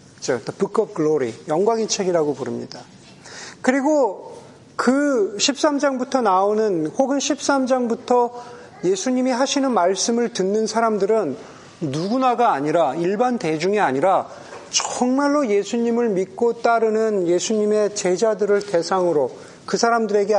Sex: male